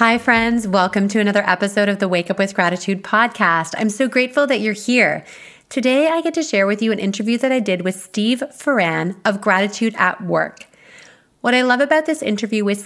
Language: English